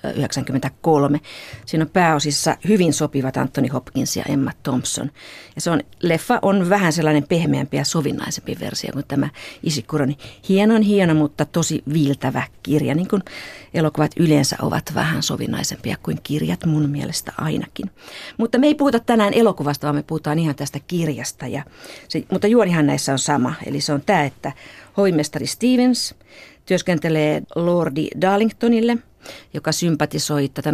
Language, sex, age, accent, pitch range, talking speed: Finnish, female, 50-69, native, 145-190 Hz, 145 wpm